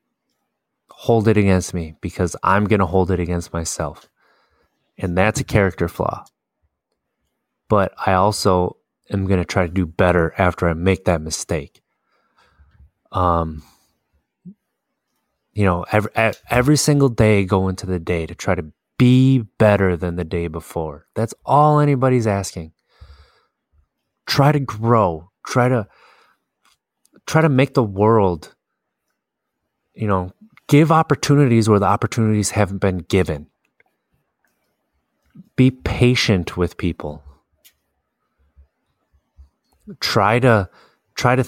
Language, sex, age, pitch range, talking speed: English, male, 20-39, 85-110 Hz, 125 wpm